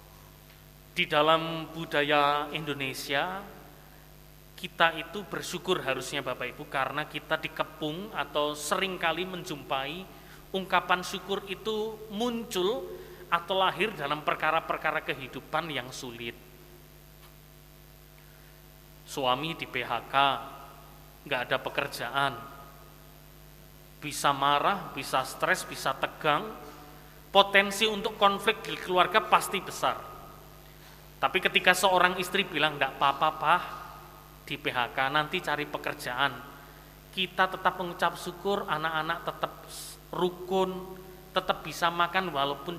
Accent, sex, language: native, male, Indonesian